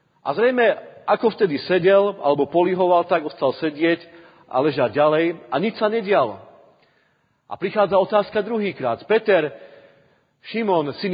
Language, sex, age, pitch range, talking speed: Slovak, male, 40-59, 150-195 Hz, 130 wpm